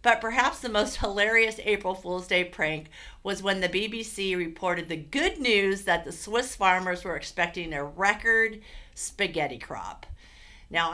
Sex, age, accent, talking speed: female, 50-69, American, 155 wpm